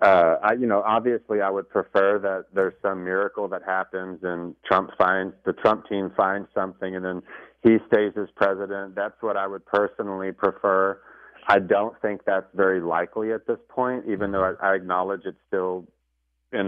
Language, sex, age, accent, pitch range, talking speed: English, male, 40-59, American, 90-105 Hz, 180 wpm